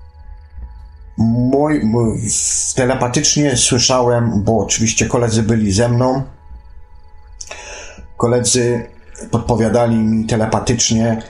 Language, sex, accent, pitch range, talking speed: Polish, male, native, 95-125 Hz, 70 wpm